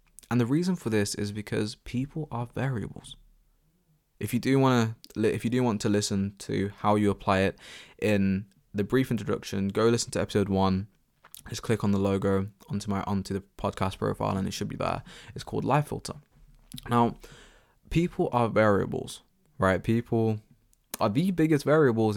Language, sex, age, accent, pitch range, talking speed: English, male, 20-39, British, 95-125 Hz, 175 wpm